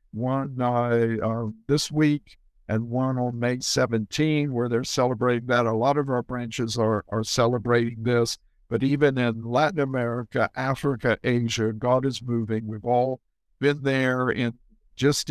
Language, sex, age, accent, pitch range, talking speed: English, male, 60-79, American, 115-145 Hz, 155 wpm